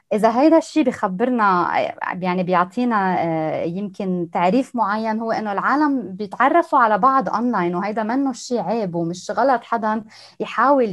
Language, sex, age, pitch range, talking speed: Arabic, female, 20-39, 195-265 Hz, 135 wpm